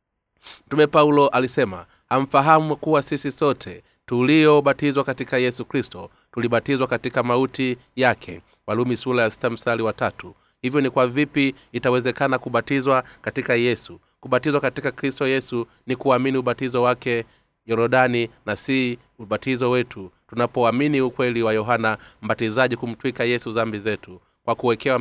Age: 30-49